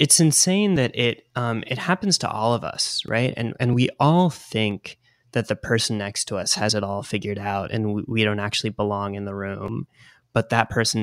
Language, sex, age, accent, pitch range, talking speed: English, male, 20-39, American, 105-125 Hz, 220 wpm